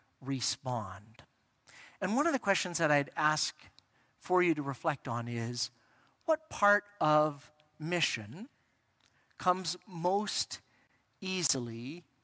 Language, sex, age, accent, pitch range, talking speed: English, male, 50-69, American, 135-185 Hz, 110 wpm